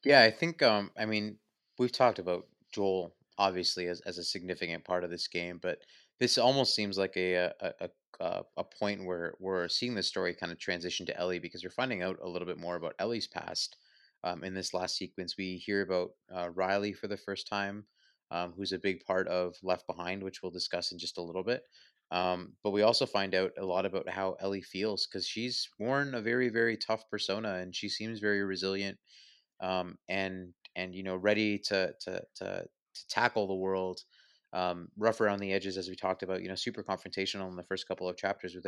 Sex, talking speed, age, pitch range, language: male, 215 wpm, 20-39, 90-105 Hz, English